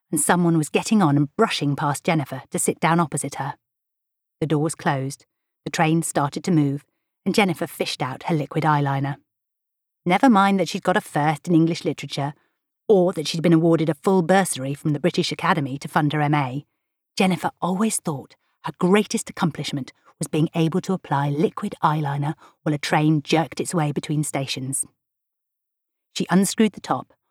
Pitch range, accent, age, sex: 145-185 Hz, British, 40-59, female